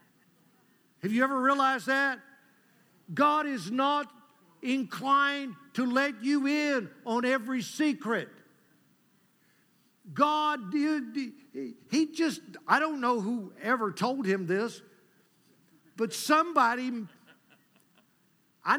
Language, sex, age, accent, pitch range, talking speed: English, male, 50-69, American, 200-280 Hz, 95 wpm